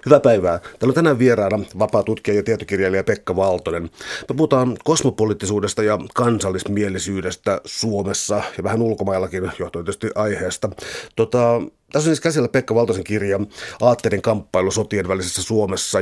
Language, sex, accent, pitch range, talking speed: Finnish, male, native, 95-115 Hz, 135 wpm